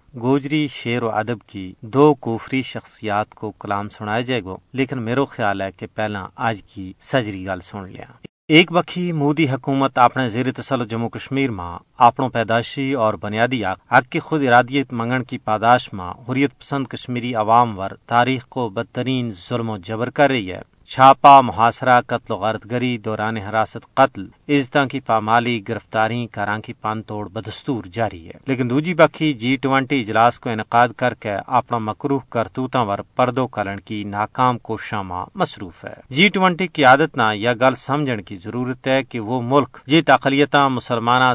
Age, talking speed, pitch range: 40-59, 175 wpm, 110-135 Hz